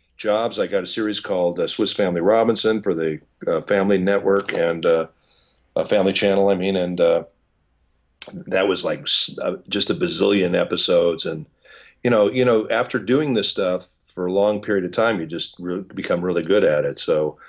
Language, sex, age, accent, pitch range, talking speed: English, male, 40-59, American, 90-110 Hz, 195 wpm